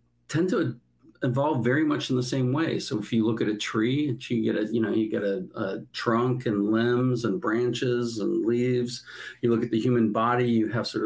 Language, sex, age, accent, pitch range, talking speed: English, male, 50-69, American, 110-125 Hz, 220 wpm